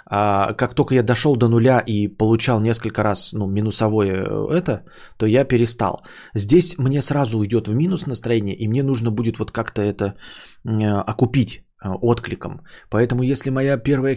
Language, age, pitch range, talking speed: Bulgarian, 20-39, 110-135 Hz, 155 wpm